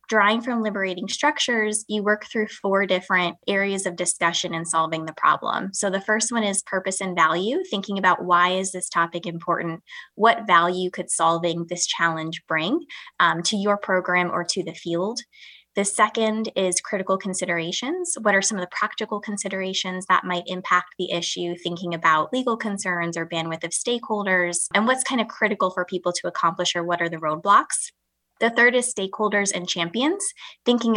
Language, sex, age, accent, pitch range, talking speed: English, female, 20-39, American, 175-210 Hz, 180 wpm